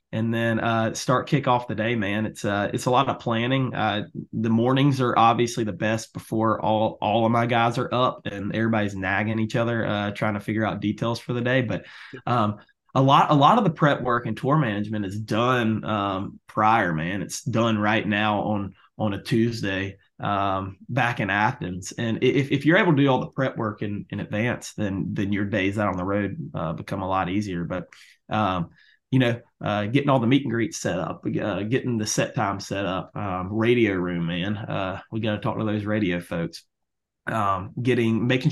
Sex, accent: male, American